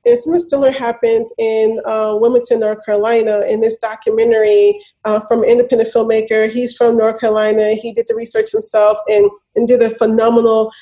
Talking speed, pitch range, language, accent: 170 wpm, 225-285 Hz, English, American